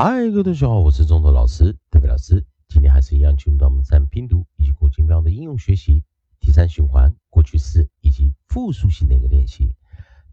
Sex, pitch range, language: male, 75-90 Hz, Chinese